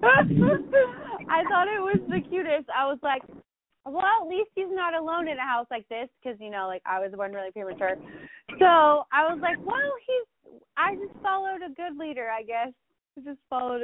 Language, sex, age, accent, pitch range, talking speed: English, female, 20-39, American, 230-305 Hz, 200 wpm